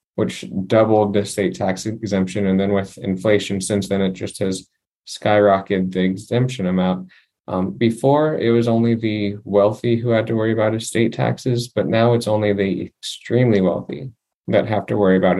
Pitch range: 100-115 Hz